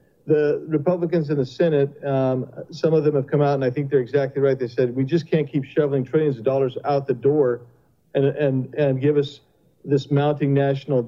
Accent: American